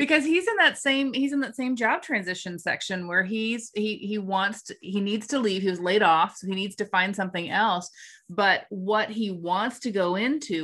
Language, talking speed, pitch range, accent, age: English, 225 wpm, 165-215 Hz, American, 30-49